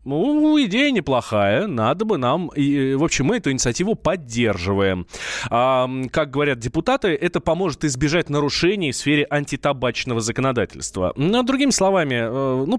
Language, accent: Russian, native